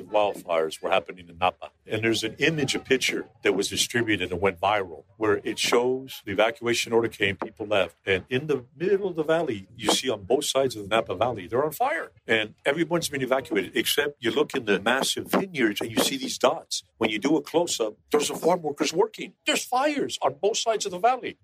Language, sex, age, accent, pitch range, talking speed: English, male, 50-69, American, 110-145 Hz, 225 wpm